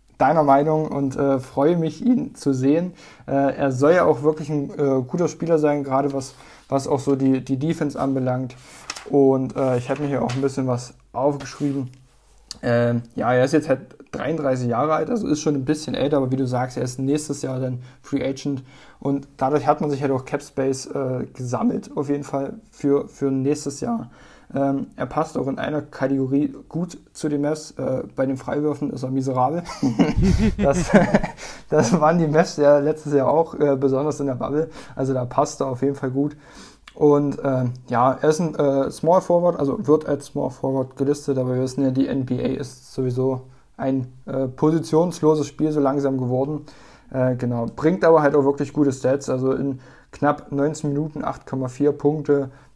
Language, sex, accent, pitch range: German, male, German, 130-150 Hz